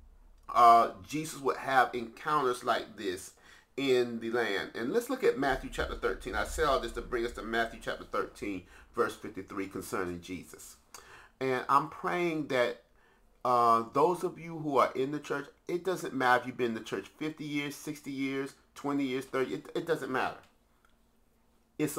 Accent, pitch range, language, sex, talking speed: American, 115-155 Hz, English, male, 180 wpm